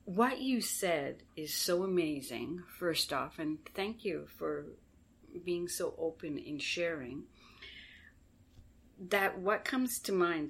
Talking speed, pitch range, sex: 125 wpm, 155-195 Hz, female